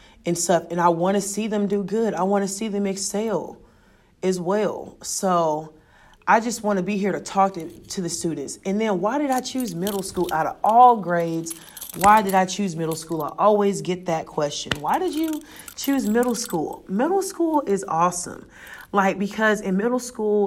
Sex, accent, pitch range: female, American, 170-210 Hz